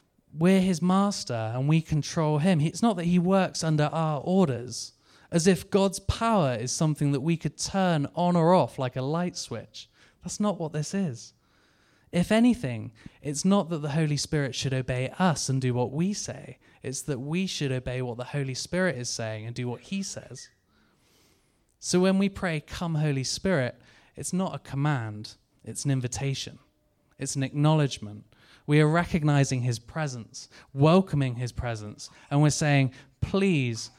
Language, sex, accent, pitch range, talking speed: English, male, British, 125-165 Hz, 175 wpm